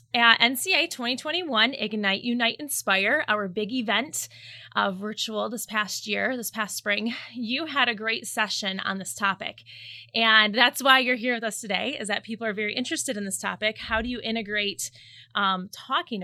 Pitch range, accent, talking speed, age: 205-260 Hz, American, 175 wpm, 20-39